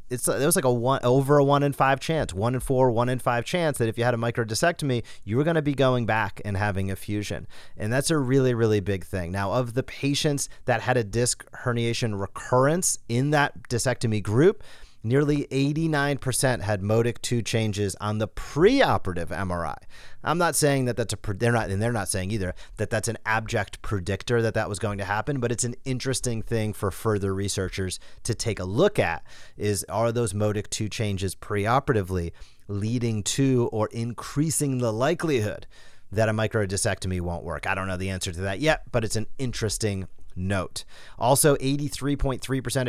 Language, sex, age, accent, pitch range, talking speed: English, male, 30-49, American, 100-130 Hz, 195 wpm